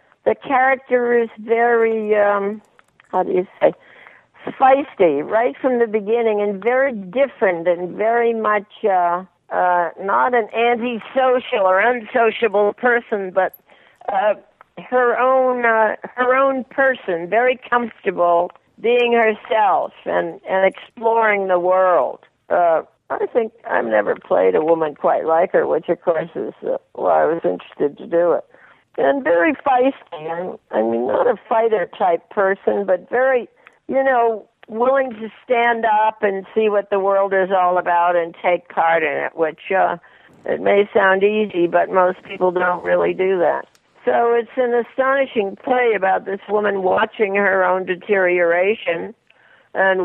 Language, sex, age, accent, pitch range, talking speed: English, female, 50-69, American, 185-240 Hz, 150 wpm